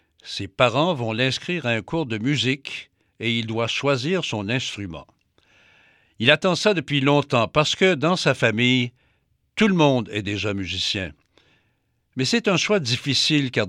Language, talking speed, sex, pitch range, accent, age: French, 160 wpm, male, 115-155 Hz, French, 60-79